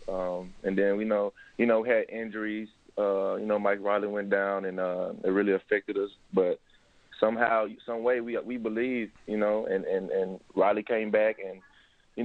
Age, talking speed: 20-39, 200 wpm